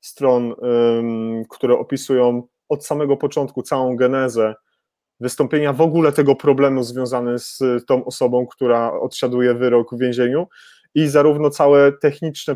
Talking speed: 125 wpm